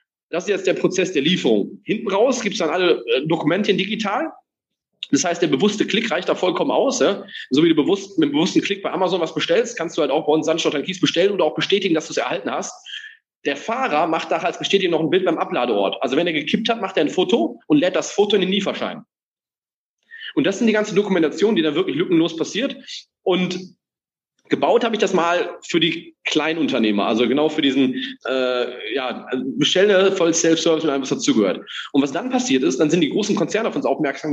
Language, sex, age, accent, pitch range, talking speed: German, male, 30-49, German, 155-245 Hz, 225 wpm